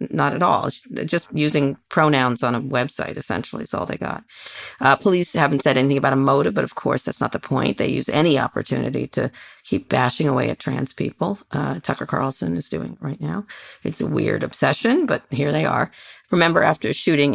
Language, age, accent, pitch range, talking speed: English, 40-59, American, 125-150 Hz, 210 wpm